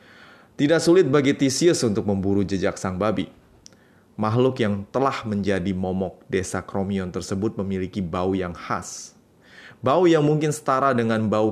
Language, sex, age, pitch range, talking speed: Indonesian, male, 20-39, 95-125 Hz, 140 wpm